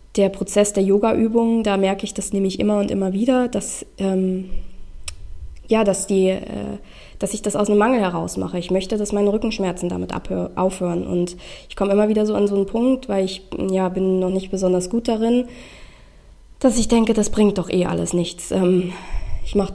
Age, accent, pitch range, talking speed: 20-39, German, 190-215 Hz, 205 wpm